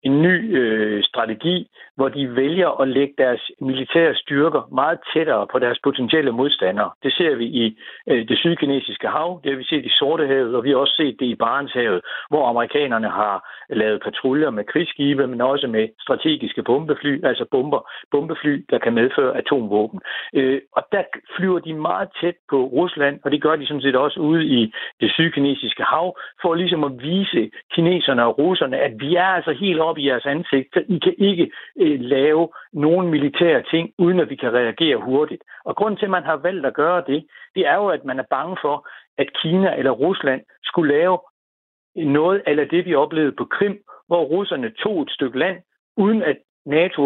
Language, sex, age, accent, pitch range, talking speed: Danish, male, 60-79, native, 135-175 Hz, 195 wpm